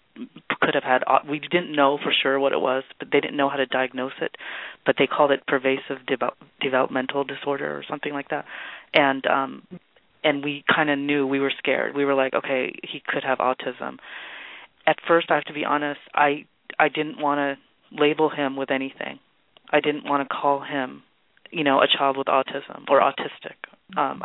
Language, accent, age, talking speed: English, American, 30-49, 200 wpm